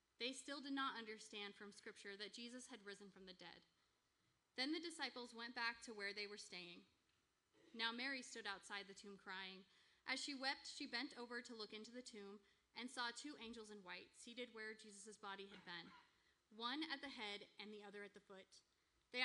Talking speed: 205 wpm